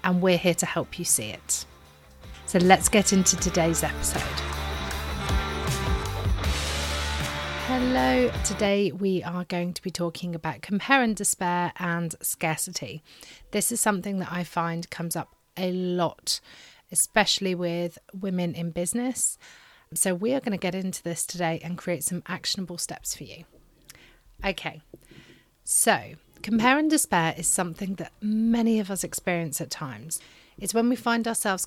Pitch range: 160-195 Hz